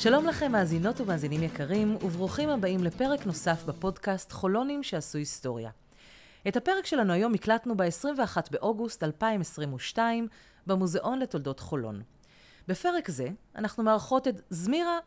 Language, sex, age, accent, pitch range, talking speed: Hebrew, female, 30-49, native, 155-230 Hz, 120 wpm